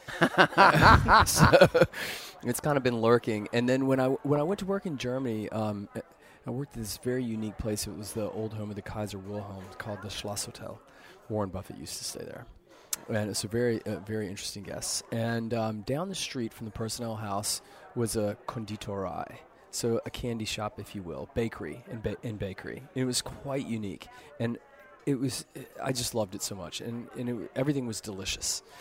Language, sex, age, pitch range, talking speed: English, male, 30-49, 105-125 Hz, 200 wpm